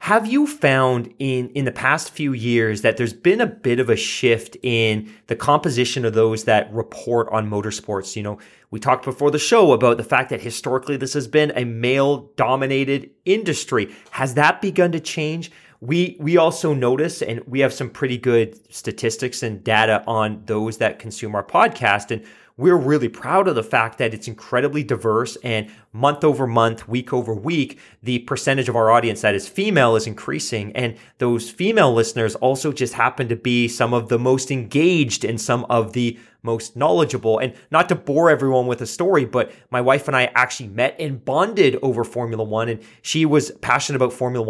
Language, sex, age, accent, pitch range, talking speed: English, male, 30-49, American, 115-140 Hz, 190 wpm